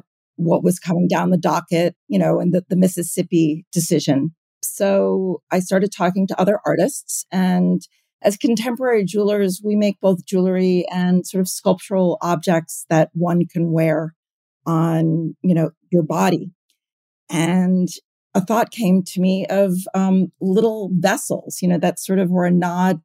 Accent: American